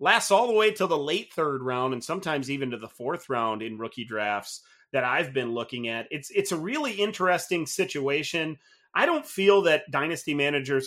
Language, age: English, 30-49